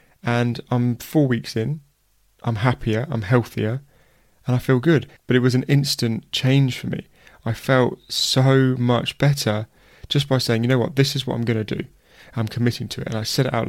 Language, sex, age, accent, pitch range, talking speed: English, male, 20-39, British, 115-130 Hz, 210 wpm